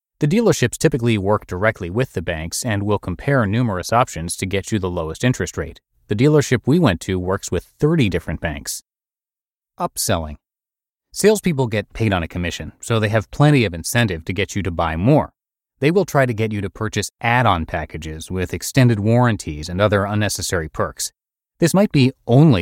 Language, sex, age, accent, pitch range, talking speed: English, male, 30-49, American, 95-130 Hz, 185 wpm